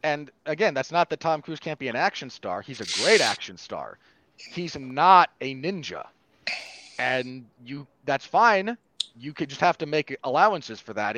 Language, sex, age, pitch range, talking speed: English, male, 30-49, 125-155 Hz, 180 wpm